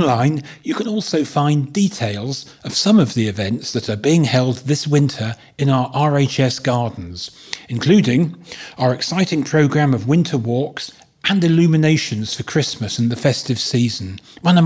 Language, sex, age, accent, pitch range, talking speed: English, male, 40-59, British, 125-150 Hz, 155 wpm